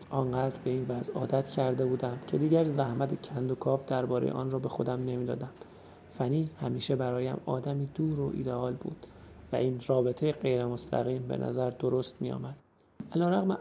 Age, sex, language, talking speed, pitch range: 30-49, male, Persian, 165 wpm, 125-145 Hz